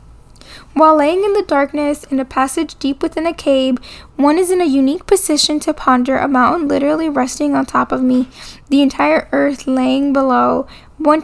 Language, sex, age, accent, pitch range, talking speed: English, female, 10-29, American, 255-295 Hz, 180 wpm